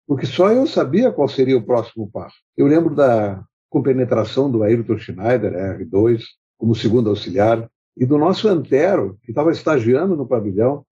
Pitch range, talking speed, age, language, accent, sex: 115-170 Hz, 160 wpm, 60-79, Portuguese, Brazilian, male